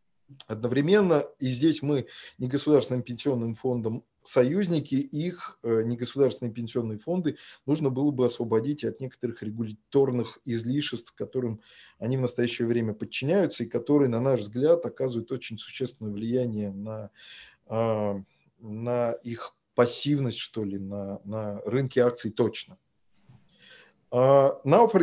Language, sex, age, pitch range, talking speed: Russian, male, 20-39, 115-145 Hz, 115 wpm